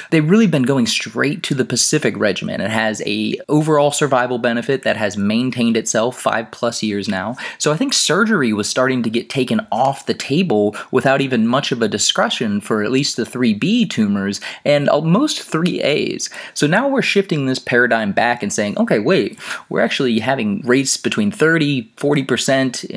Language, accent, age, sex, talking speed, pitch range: English, American, 30-49, male, 175 wpm, 105-150 Hz